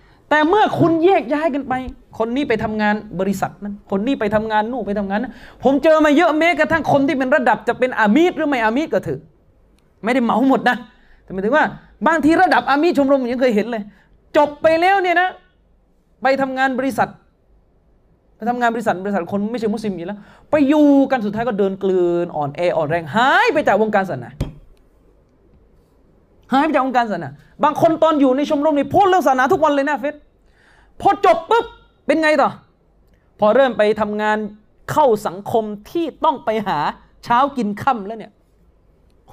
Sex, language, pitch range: male, Thai, 205-290 Hz